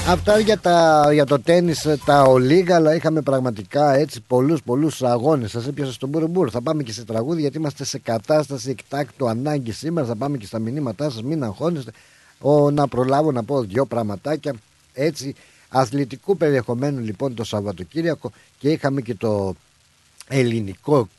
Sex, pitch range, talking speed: male, 110-145 Hz, 150 wpm